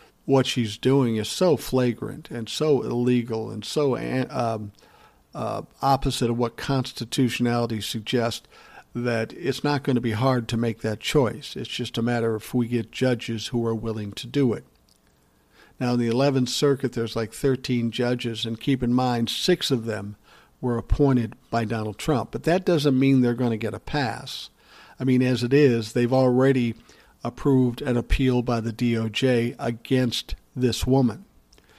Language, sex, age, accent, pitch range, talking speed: English, male, 50-69, American, 115-135 Hz, 170 wpm